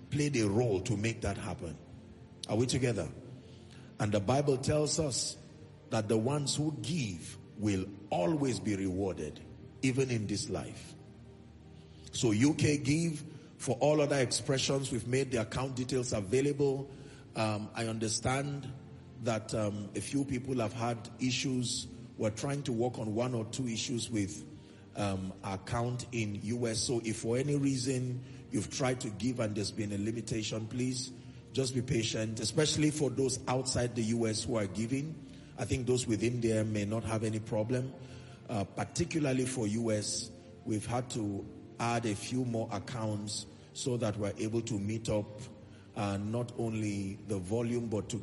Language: English